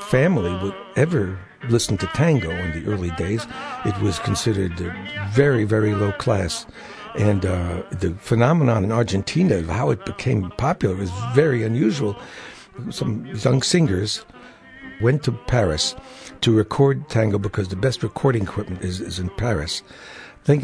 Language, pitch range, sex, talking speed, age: English, 105-145 Hz, male, 150 wpm, 60-79